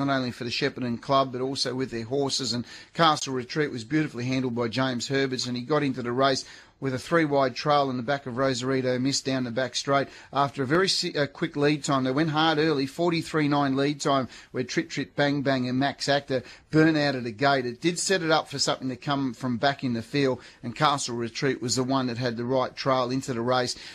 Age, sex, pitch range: 30-49, male, 125-145 Hz